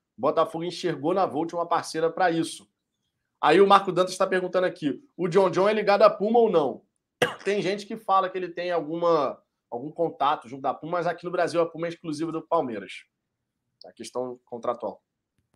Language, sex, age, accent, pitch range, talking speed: Portuguese, male, 20-39, Brazilian, 150-185 Hz, 195 wpm